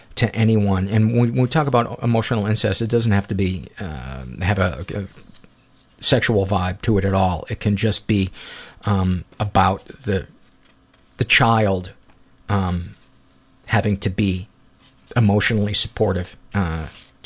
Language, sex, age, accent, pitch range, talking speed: English, male, 50-69, American, 95-115 Hz, 140 wpm